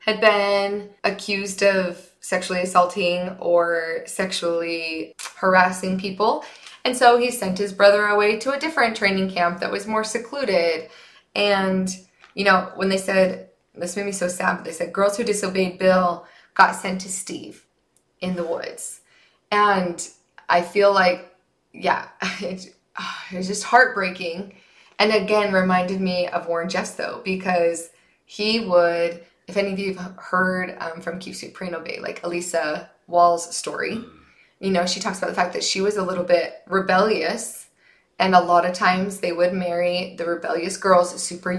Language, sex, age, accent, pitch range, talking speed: English, female, 20-39, American, 175-200 Hz, 160 wpm